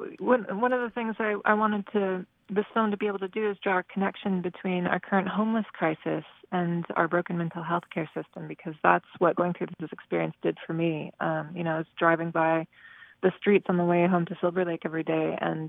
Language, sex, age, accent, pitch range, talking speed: English, female, 30-49, American, 165-195 Hz, 225 wpm